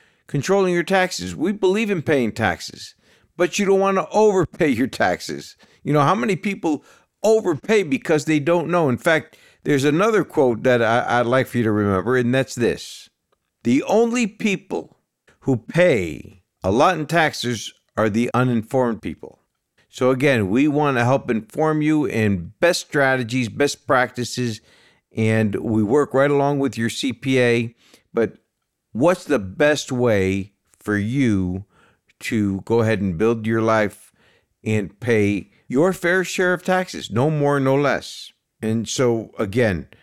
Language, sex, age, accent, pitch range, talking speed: English, male, 50-69, American, 110-155 Hz, 155 wpm